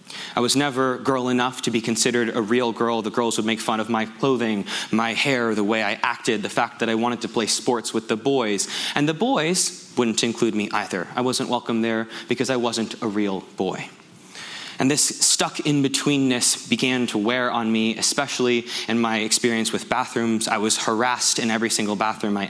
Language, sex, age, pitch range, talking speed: English, male, 20-39, 110-130 Hz, 205 wpm